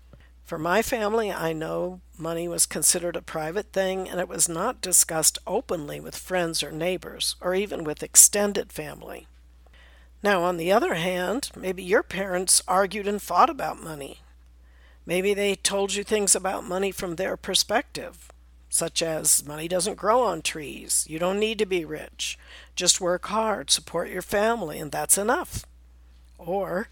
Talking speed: 160 wpm